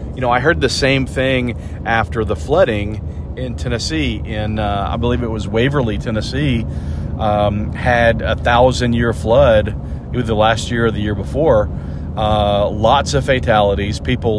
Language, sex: English, male